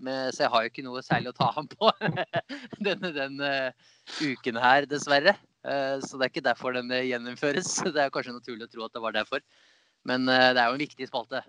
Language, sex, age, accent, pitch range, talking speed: English, male, 20-39, Norwegian, 115-140 Hz, 210 wpm